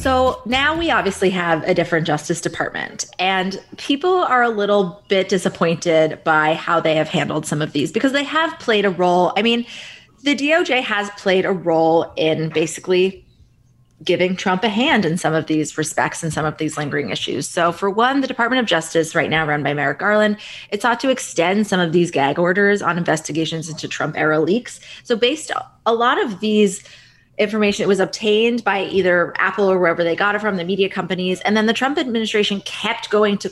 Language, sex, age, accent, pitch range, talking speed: English, female, 20-39, American, 165-215 Hz, 205 wpm